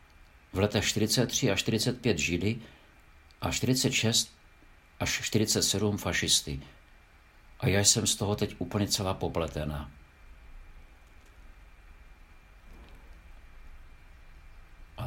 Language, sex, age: Czech, male, 50-69